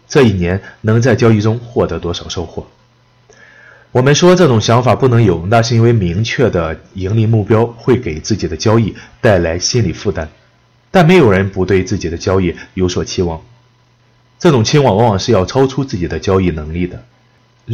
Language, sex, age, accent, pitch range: Chinese, male, 30-49, native, 95-125 Hz